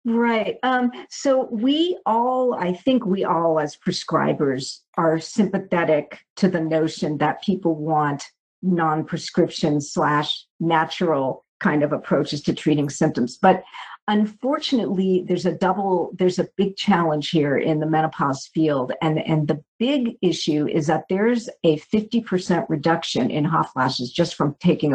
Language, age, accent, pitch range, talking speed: English, 50-69, American, 160-225 Hz, 145 wpm